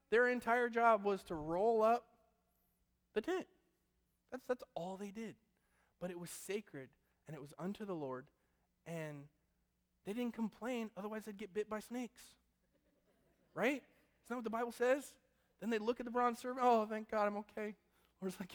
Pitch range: 145-220 Hz